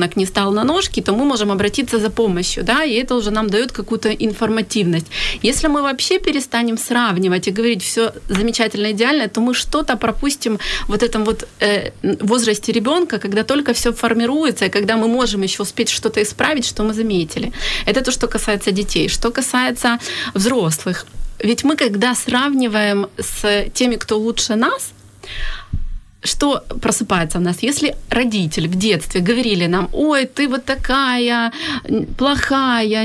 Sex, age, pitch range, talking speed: female, 30-49, 205-250 Hz, 155 wpm